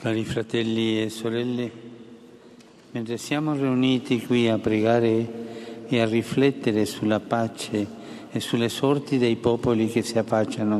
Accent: native